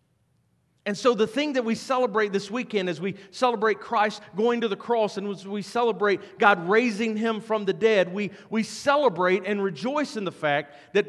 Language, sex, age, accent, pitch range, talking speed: English, male, 40-59, American, 185-230 Hz, 195 wpm